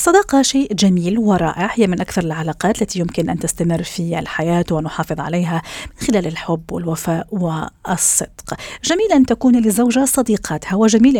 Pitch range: 170-265 Hz